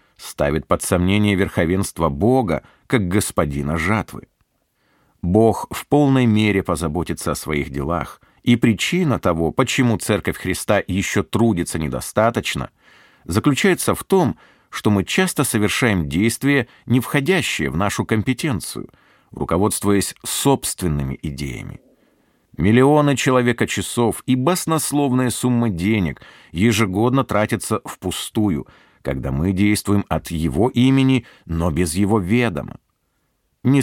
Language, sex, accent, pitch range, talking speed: Russian, male, native, 85-125 Hz, 110 wpm